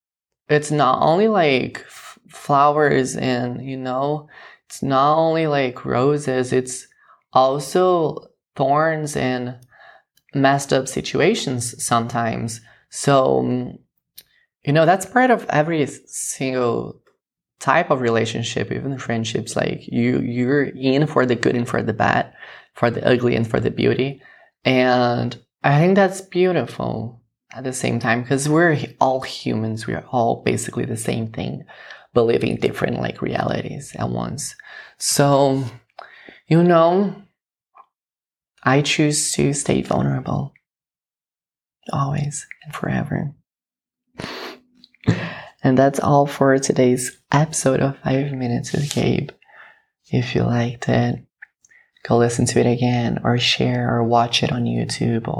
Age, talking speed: 20-39, 125 wpm